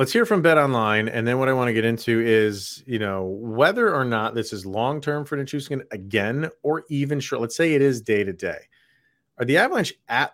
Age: 30-49